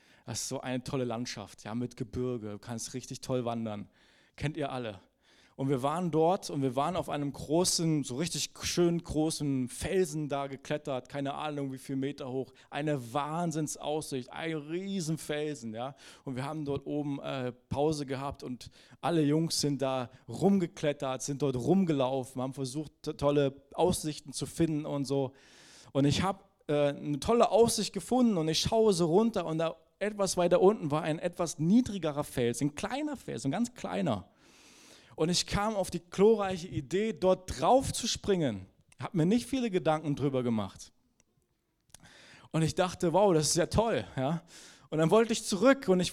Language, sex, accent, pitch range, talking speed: German, male, German, 135-185 Hz, 175 wpm